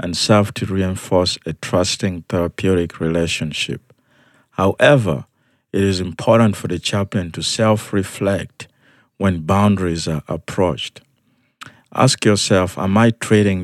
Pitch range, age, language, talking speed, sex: 90-115 Hz, 50-69, English, 115 wpm, male